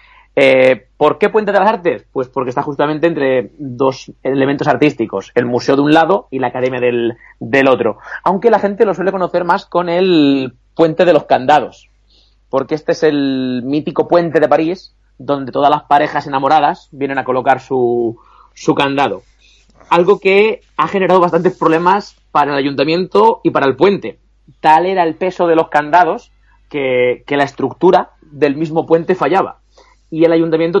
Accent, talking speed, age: Spanish, 175 wpm, 30-49